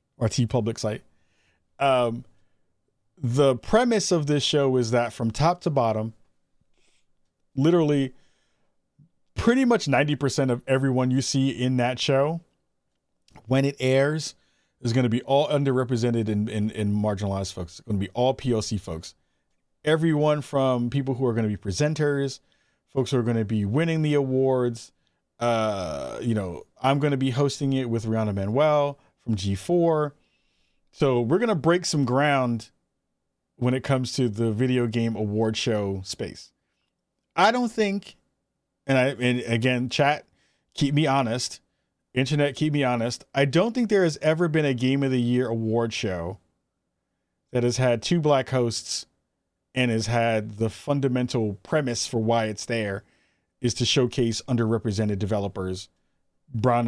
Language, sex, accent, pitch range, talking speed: English, male, American, 110-140 Hz, 150 wpm